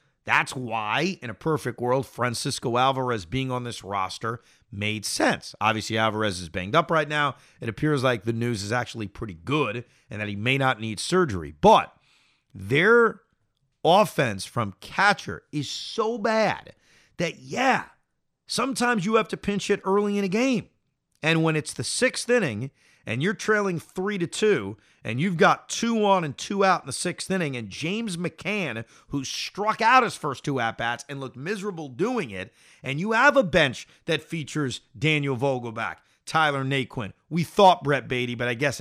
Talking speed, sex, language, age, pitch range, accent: 175 wpm, male, English, 40-59, 120-185 Hz, American